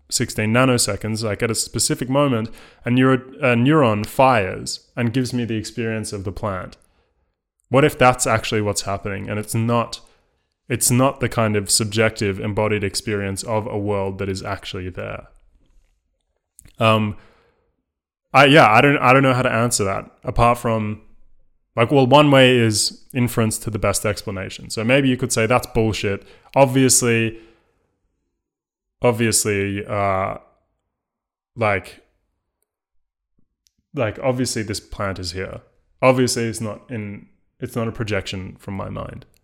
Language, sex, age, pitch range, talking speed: English, male, 20-39, 100-125 Hz, 145 wpm